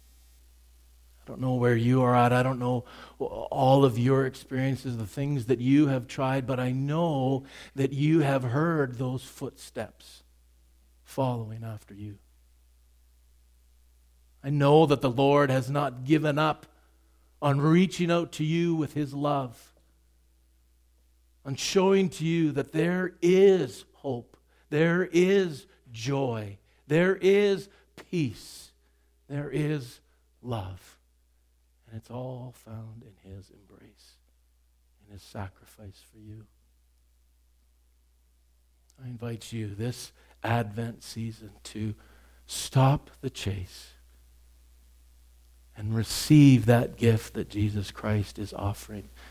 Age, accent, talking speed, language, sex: 50-69, American, 120 wpm, English, male